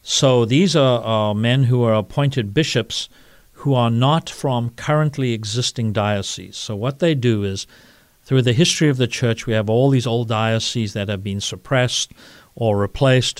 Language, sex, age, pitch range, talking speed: English, male, 50-69, 110-135 Hz, 175 wpm